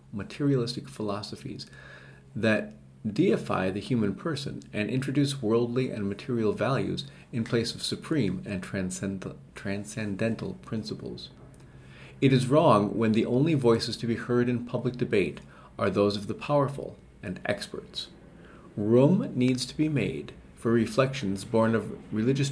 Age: 40-59